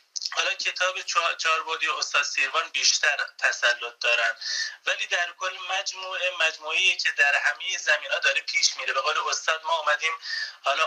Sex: male